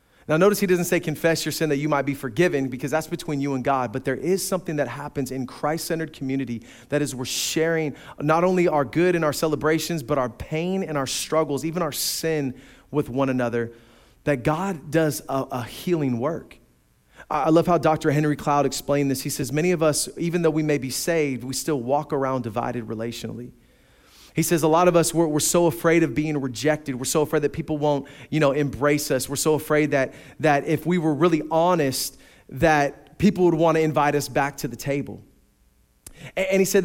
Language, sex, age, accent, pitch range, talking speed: English, male, 30-49, American, 140-170 Hz, 215 wpm